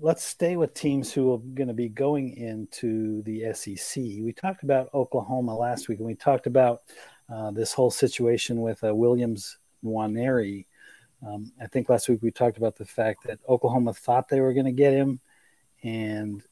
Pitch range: 115-135 Hz